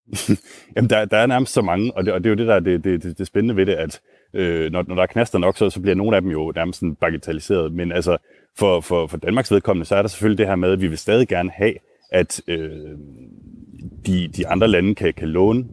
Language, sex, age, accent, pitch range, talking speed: Danish, male, 30-49, native, 80-100 Hz, 250 wpm